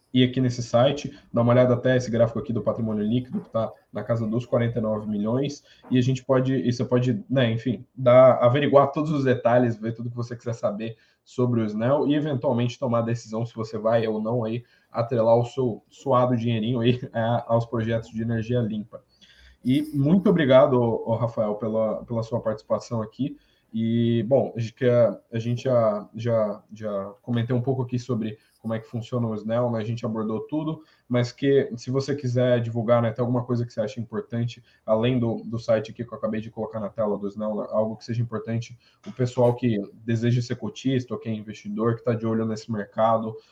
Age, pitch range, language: 20-39, 110-125 Hz, Portuguese